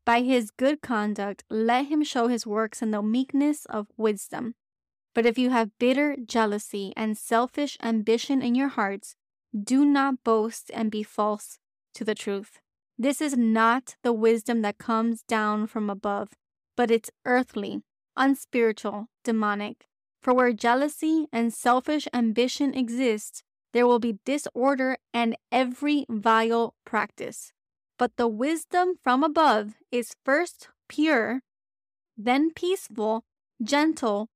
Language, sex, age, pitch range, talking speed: English, female, 20-39, 220-260 Hz, 135 wpm